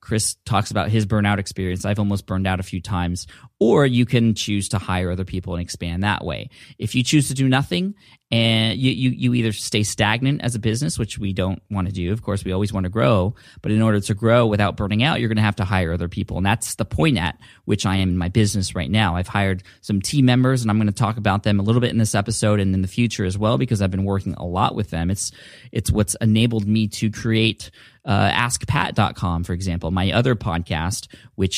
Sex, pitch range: male, 95-120 Hz